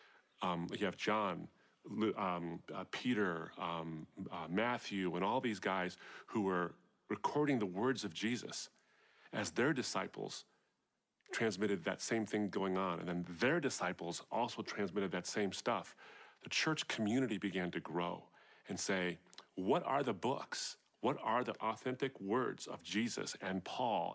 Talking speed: 150 wpm